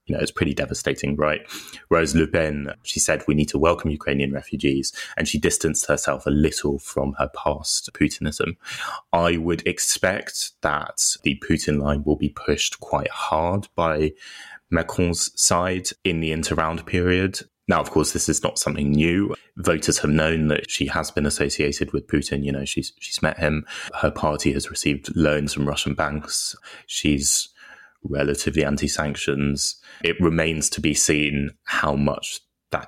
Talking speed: 160 wpm